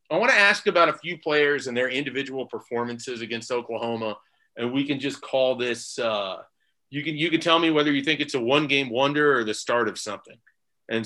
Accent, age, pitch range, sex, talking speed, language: American, 30-49, 115-145 Hz, male, 220 wpm, English